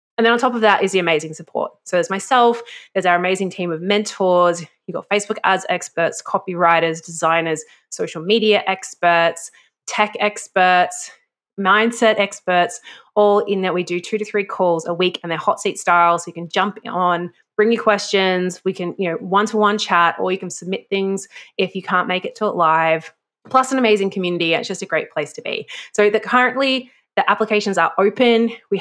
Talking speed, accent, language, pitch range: 200 wpm, Australian, English, 175-230 Hz